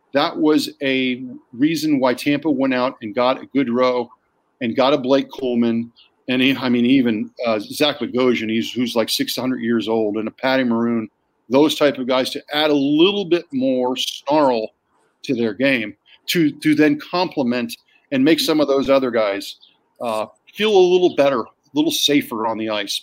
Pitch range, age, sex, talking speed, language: 120-160 Hz, 40-59, male, 190 wpm, English